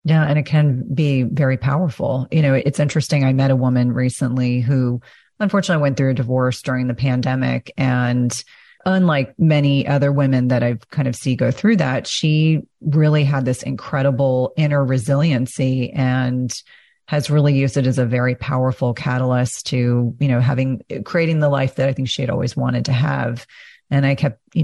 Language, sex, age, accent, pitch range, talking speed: English, female, 30-49, American, 125-145 Hz, 185 wpm